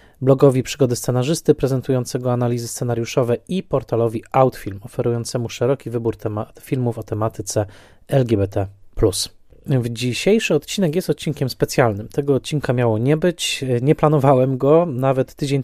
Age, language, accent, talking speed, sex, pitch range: 20-39, Polish, native, 120 wpm, male, 115-140 Hz